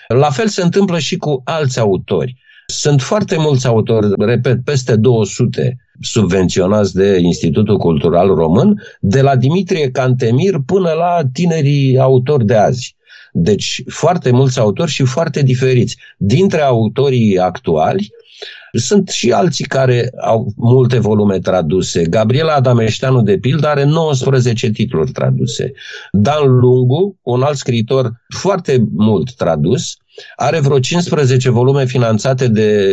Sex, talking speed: male, 130 wpm